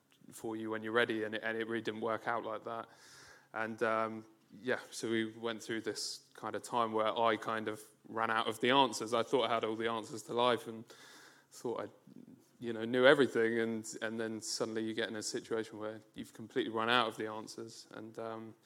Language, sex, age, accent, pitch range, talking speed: English, male, 20-39, British, 110-120 Hz, 220 wpm